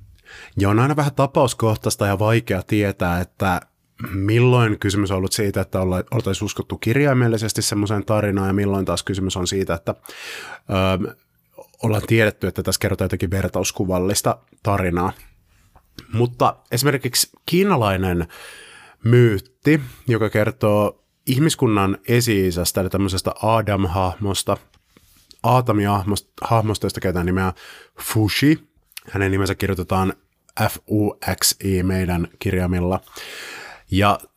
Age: 30-49